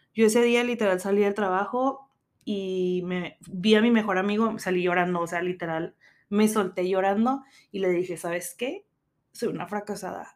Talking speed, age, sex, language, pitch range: 175 wpm, 20-39, female, Spanish, 185-235 Hz